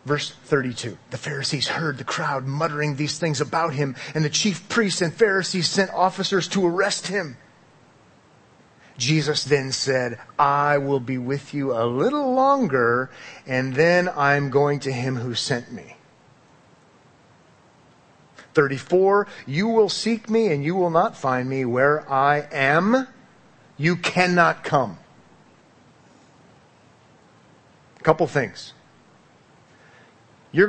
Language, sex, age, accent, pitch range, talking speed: English, male, 30-49, American, 130-180 Hz, 125 wpm